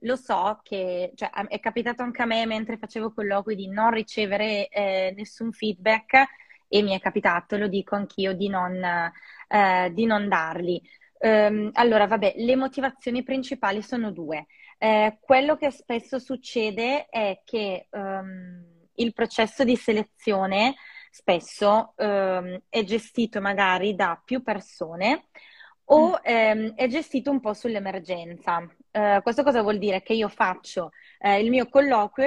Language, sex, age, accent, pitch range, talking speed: Italian, female, 20-39, native, 195-235 Hz, 135 wpm